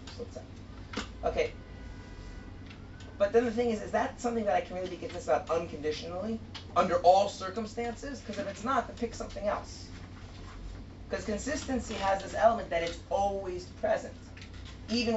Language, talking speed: English, 150 wpm